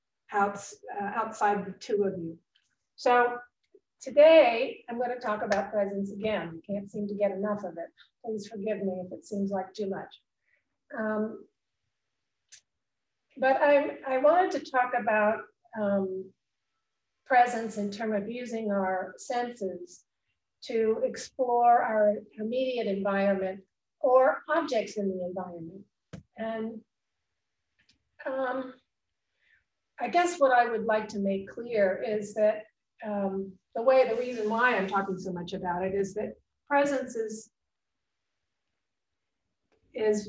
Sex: female